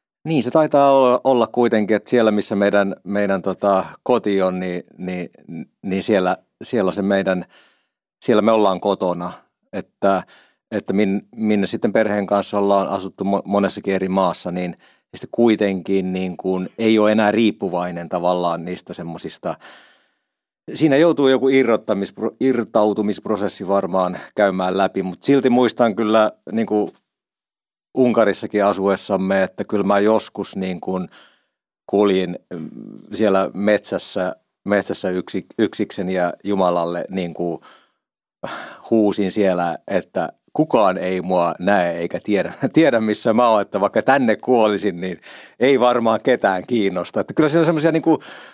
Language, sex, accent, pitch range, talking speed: Finnish, male, native, 95-110 Hz, 130 wpm